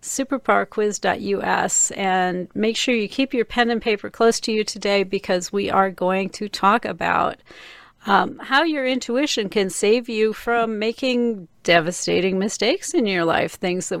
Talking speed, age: 160 wpm, 40-59